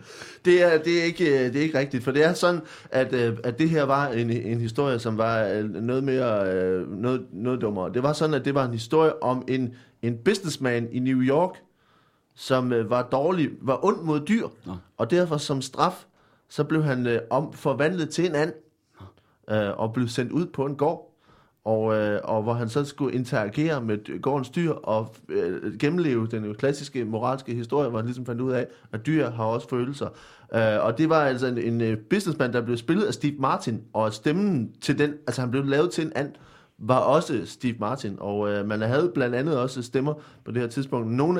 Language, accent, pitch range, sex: Danish, native, 115-150 Hz, male